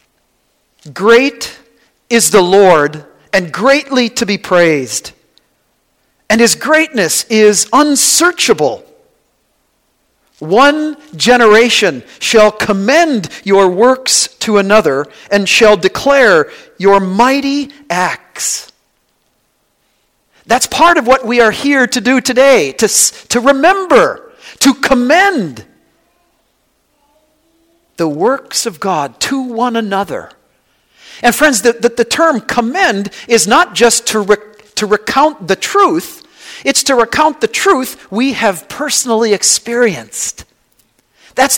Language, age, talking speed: English, 50-69, 110 wpm